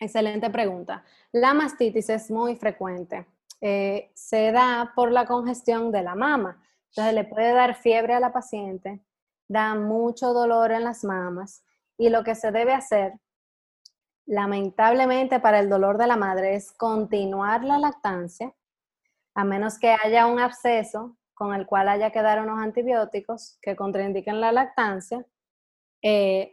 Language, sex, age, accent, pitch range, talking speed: Spanish, female, 20-39, American, 205-245 Hz, 150 wpm